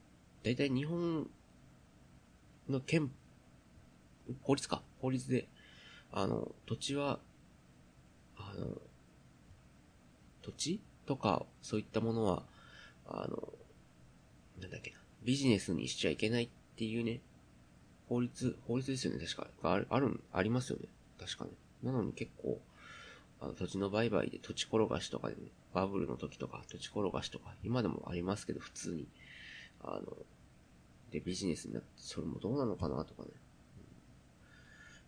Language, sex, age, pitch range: Japanese, male, 30-49, 90-125 Hz